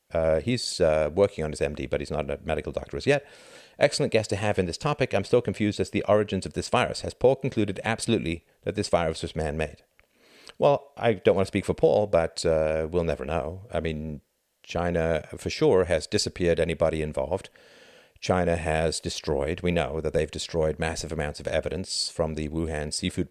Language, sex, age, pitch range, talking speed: English, male, 50-69, 80-95 Hz, 200 wpm